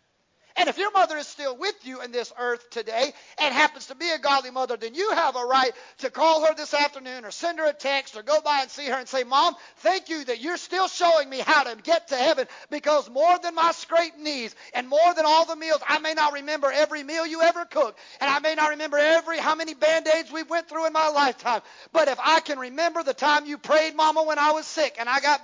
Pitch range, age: 250-325 Hz, 40-59